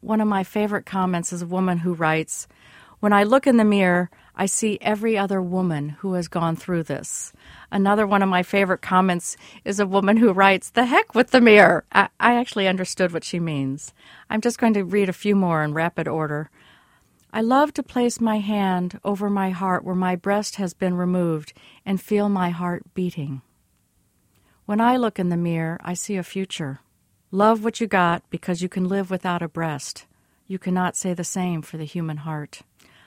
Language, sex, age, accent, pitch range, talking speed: English, female, 50-69, American, 170-210 Hz, 200 wpm